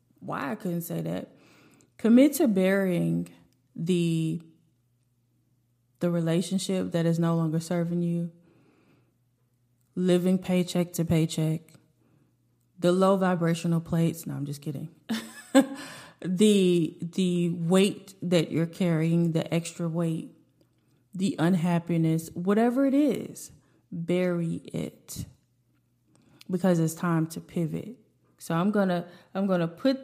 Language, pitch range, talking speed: English, 160-190 Hz, 110 wpm